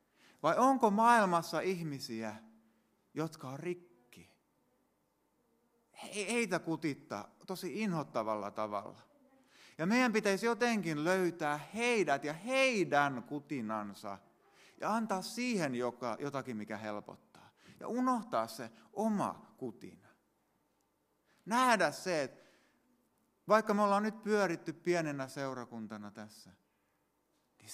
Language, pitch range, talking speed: Finnish, 110-180 Hz, 100 wpm